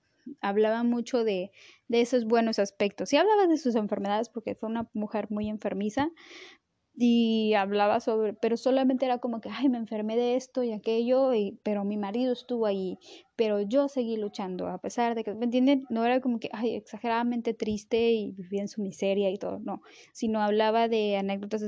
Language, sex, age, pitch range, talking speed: Spanish, female, 10-29, 210-255 Hz, 190 wpm